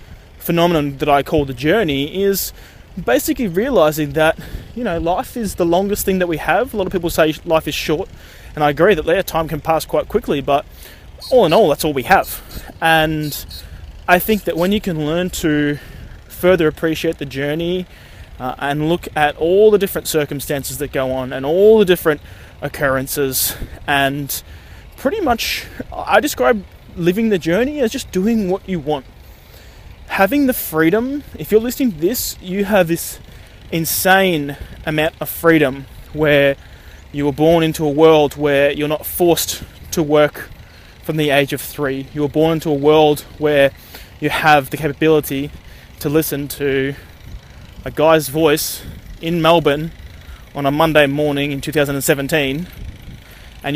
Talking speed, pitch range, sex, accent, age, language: 165 wpm, 140-170 Hz, male, Australian, 20-39, English